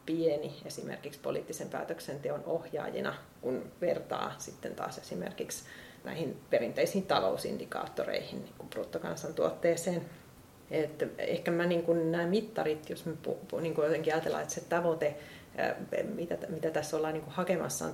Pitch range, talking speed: 155-180 Hz, 95 wpm